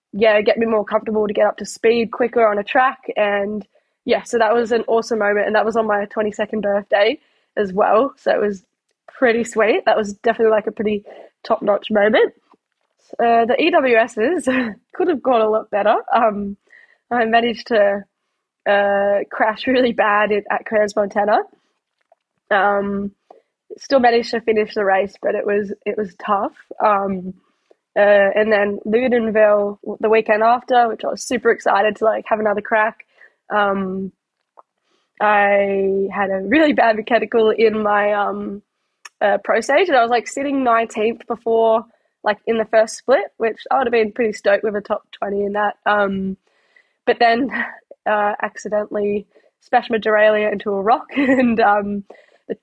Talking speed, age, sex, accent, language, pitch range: 170 wpm, 10-29, female, Australian, English, 205-235 Hz